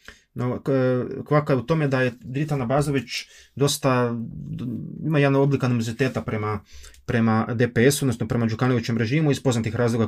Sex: male